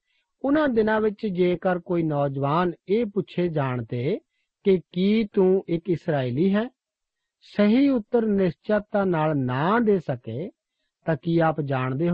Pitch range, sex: 150-215 Hz, male